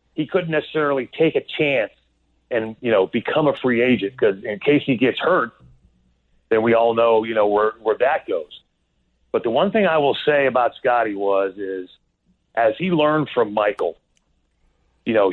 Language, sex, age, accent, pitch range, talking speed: English, male, 40-59, American, 105-140 Hz, 185 wpm